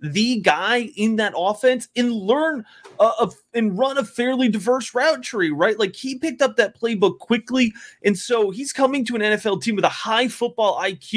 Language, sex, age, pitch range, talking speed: English, male, 30-49, 180-245 Hz, 195 wpm